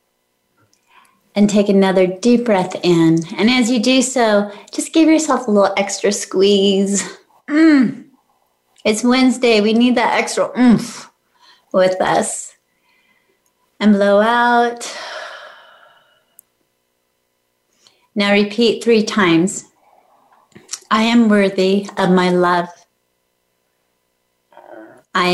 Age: 30-49